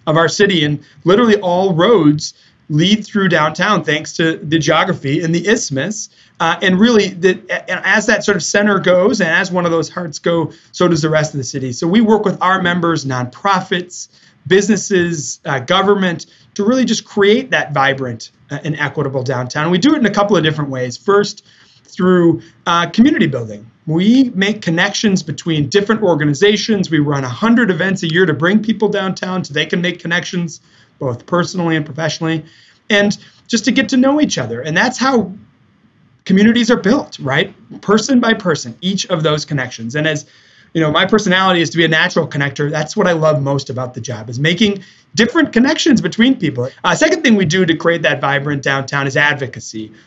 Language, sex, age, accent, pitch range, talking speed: English, male, 30-49, American, 150-200 Hz, 190 wpm